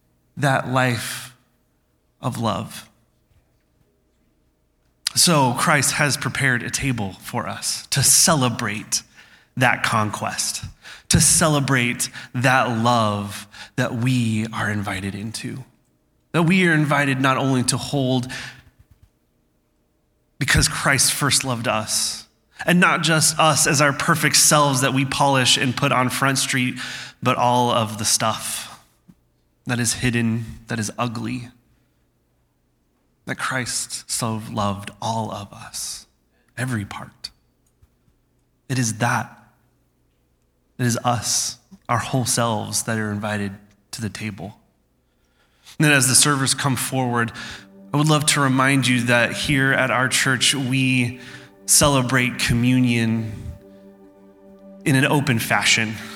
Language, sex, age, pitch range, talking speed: English, male, 20-39, 105-135 Hz, 120 wpm